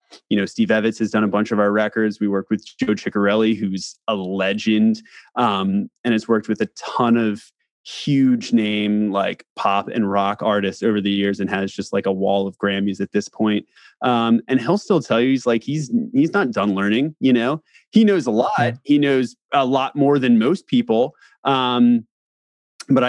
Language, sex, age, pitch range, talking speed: English, male, 20-39, 105-135 Hz, 200 wpm